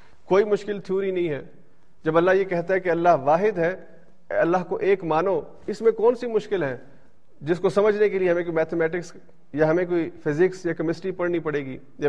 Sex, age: male, 40-59